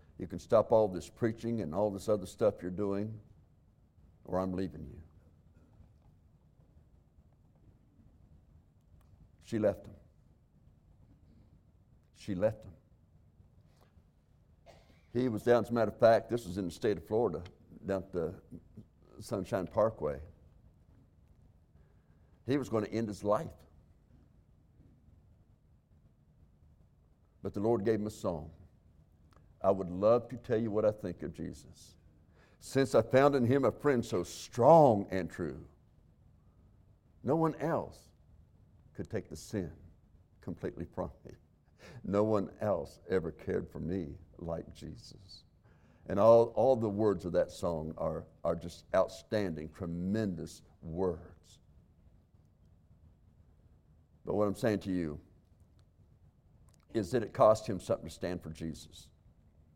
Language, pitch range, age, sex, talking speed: English, 80-110 Hz, 60-79, male, 130 wpm